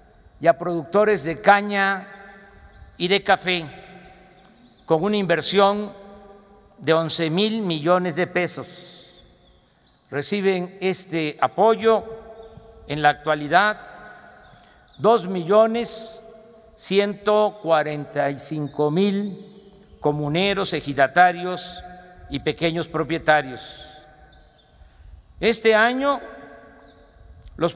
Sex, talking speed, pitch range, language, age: male, 75 wpm, 170-220 Hz, Spanish, 50-69